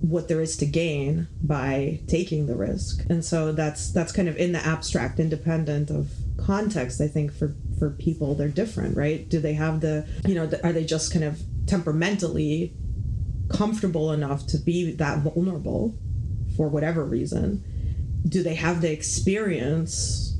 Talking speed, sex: 165 wpm, female